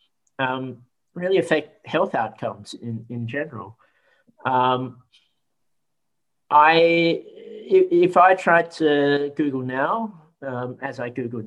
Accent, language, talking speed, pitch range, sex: Australian, English, 105 wpm, 115-145 Hz, male